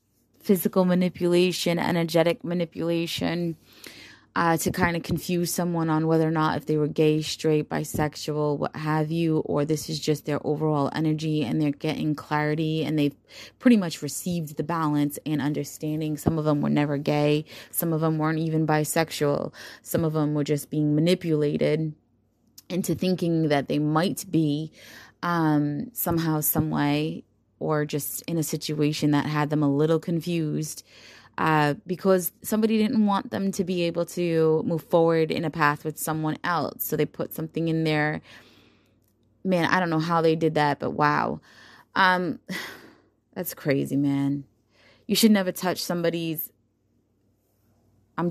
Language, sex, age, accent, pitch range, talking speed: English, female, 20-39, American, 145-165 Hz, 160 wpm